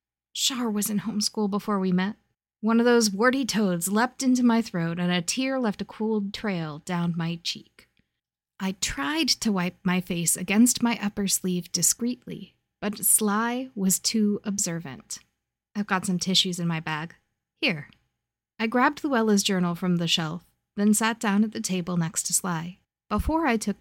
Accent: American